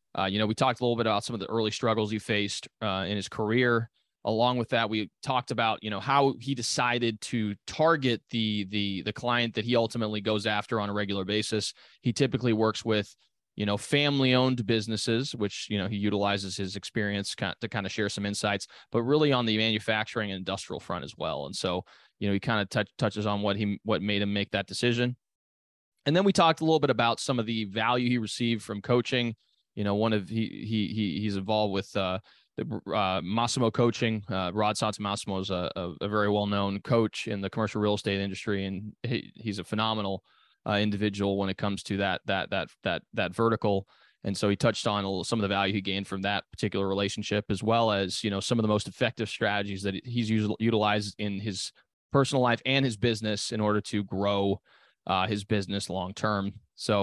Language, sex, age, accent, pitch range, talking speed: English, male, 20-39, American, 100-115 Hz, 220 wpm